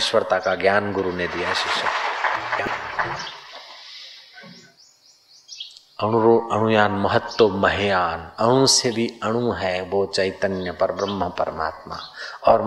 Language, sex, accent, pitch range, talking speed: Hindi, male, native, 95-115 Hz, 105 wpm